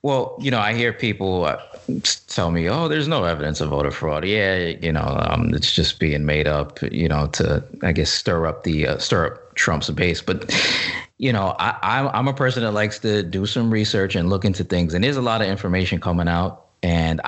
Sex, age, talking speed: male, 20-39, 220 wpm